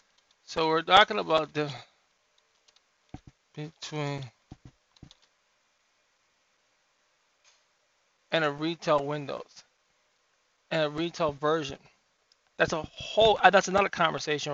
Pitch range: 150-185 Hz